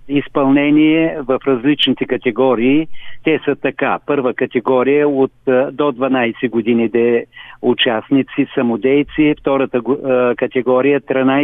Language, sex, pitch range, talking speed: Bulgarian, male, 125-150 Hz, 95 wpm